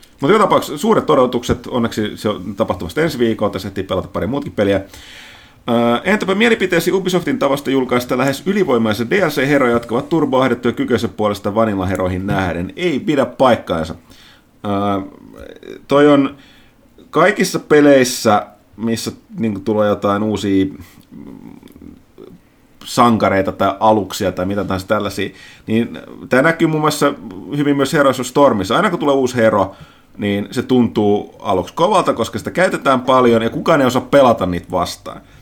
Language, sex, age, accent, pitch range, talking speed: Finnish, male, 30-49, native, 100-135 Hz, 140 wpm